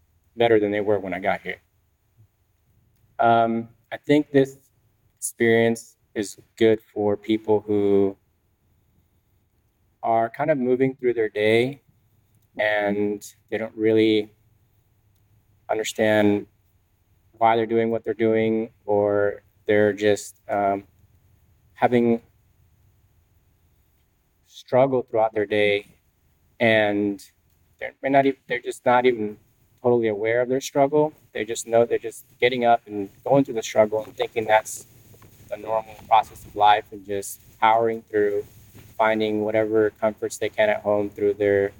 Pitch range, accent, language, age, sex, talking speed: 100-115 Hz, American, English, 20-39, male, 130 wpm